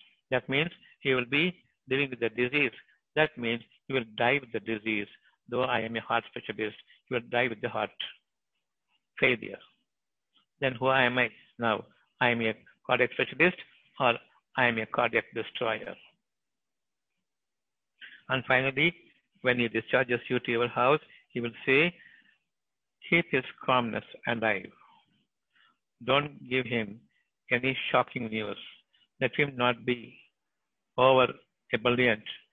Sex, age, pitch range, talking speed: male, 60-79, 115-140 Hz, 135 wpm